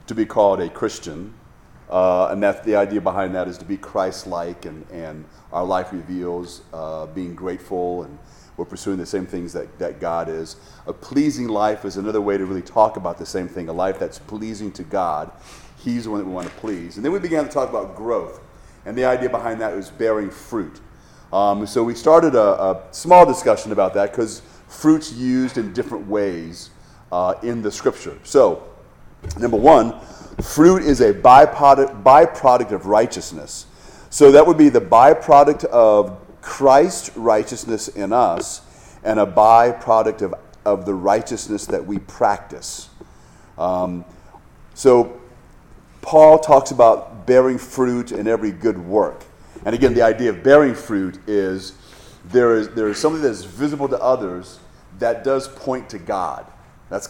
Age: 40-59